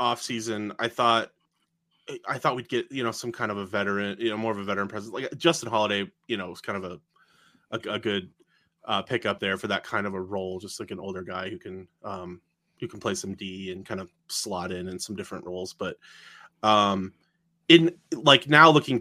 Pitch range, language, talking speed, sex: 95-120 Hz, English, 220 wpm, male